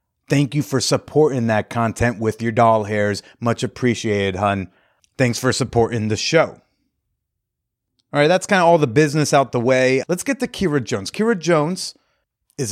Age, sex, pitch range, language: 30-49, male, 115-145 Hz, English